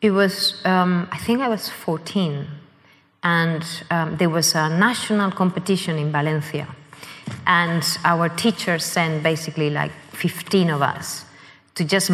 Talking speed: 140 wpm